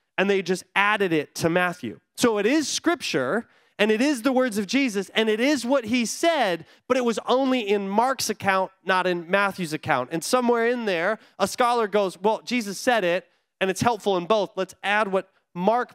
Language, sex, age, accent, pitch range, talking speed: English, male, 30-49, American, 175-235 Hz, 205 wpm